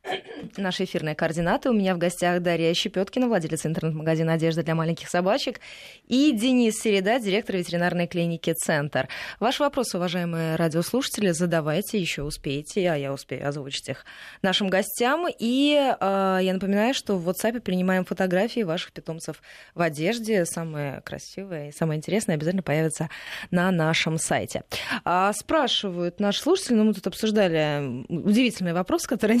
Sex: female